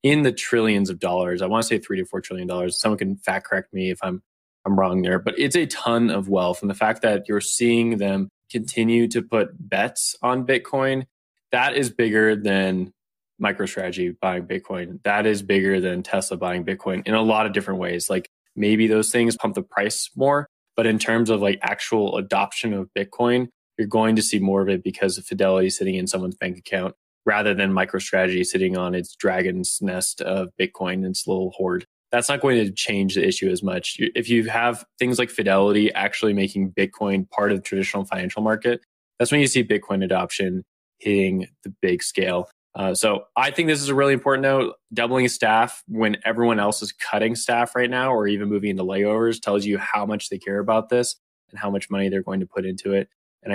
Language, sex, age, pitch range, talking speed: English, male, 20-39, 95-115 Hz, 210 wpm